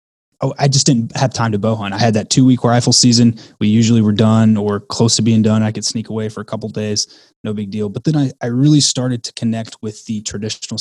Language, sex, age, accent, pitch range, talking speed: English, male, 20-39, American, 105-125 Hz, 265 wpm